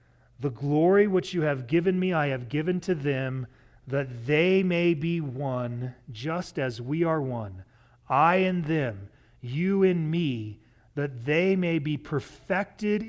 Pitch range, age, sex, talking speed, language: 125-160 Hz, 40-59, male, 150 wpm, English